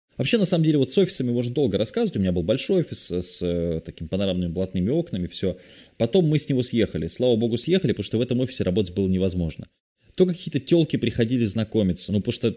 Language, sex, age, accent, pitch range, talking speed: Russian, male, 20-39, native, 90-120 Hz, 220 wpm